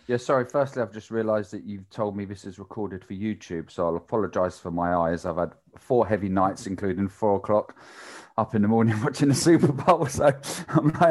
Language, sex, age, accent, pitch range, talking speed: English, male, 30-49, British, 90-115 Hz, 210 wpm